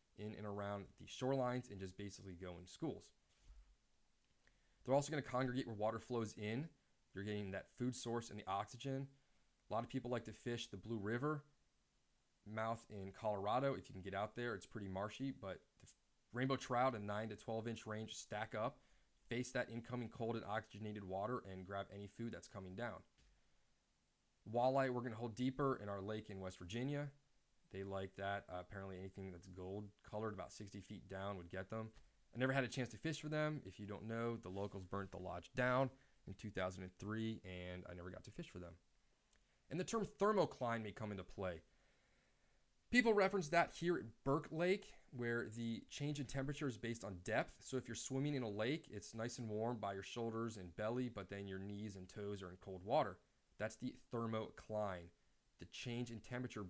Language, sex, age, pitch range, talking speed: English, male, 20-39, 95-125 Hz, 200 wpm